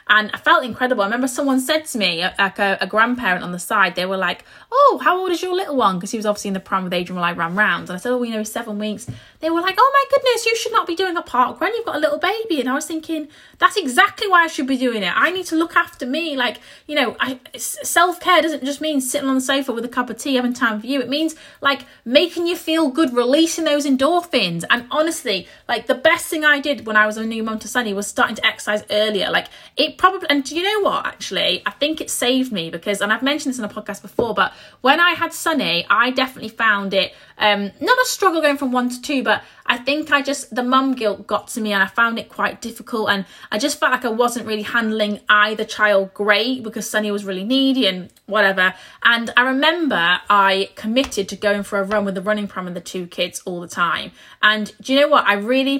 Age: 20-39